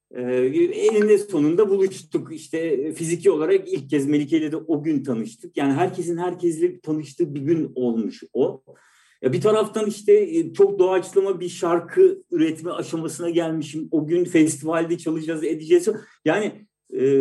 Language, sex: Turkish, male